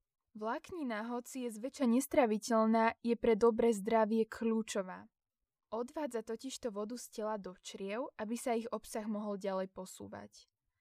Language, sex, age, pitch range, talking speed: Slovak, female, 10-29, 215-255 Hz, 135 wpm